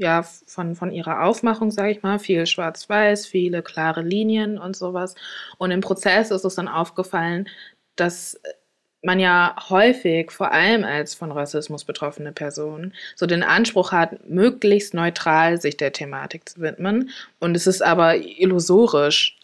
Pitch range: 165-195 Hz